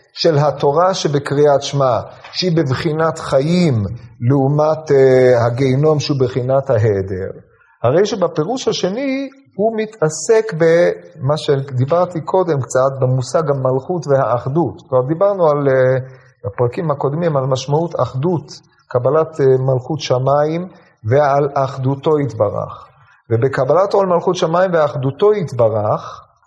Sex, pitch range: male, 130-165 Hz